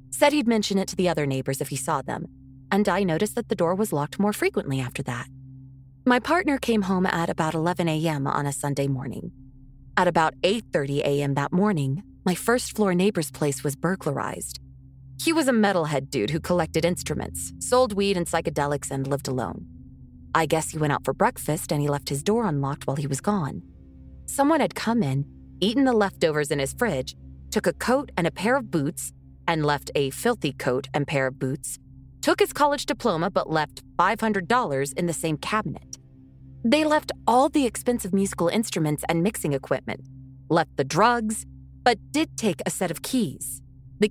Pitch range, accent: 135-200 Hz, American